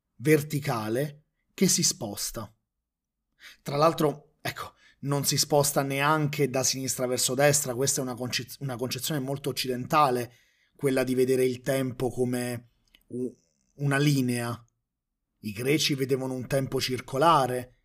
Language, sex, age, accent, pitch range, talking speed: Italian, male, 30-49, native, 120-145 Hz, 120 wpm